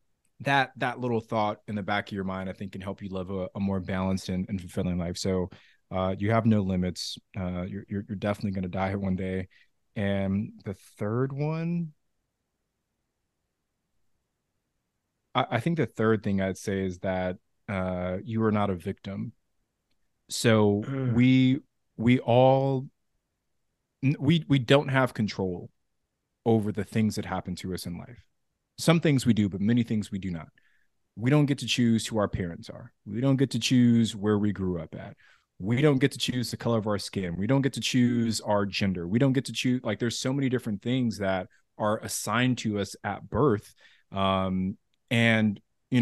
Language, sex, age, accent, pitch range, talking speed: English, male, 20-39, American, 95-125 Hz, 190 wpm